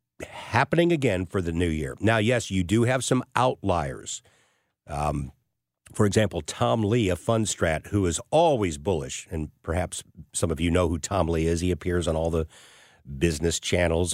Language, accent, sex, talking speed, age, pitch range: English, American, male, 180 wpm, 50-69, 85-130 Hz